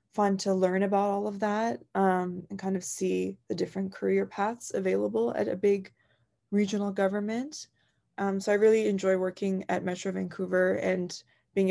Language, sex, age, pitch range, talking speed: English, female, 20-39, 180-205 Hz, 170 wpm